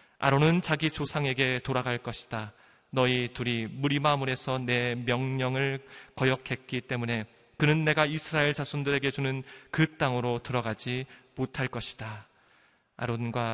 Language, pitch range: Korean, 120-140 Hz